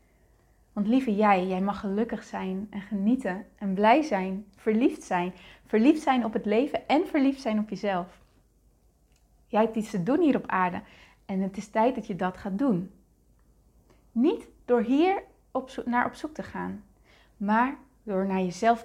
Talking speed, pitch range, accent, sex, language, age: 170 wpm, 200-255 Hz, Dutch, female, Dutch, 20-39